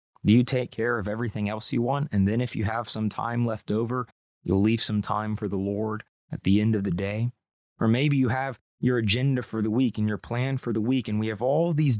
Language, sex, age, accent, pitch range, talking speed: English, male, 30-49, American, 100-125 Hz, 255 wpm